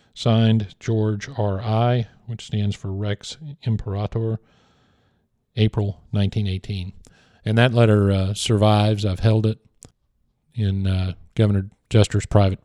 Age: 50-69